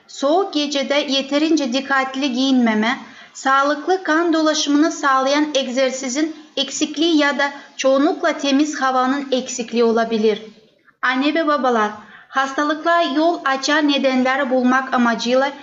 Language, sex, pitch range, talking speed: Turkish, female, 240-295 Hz, 105 wpm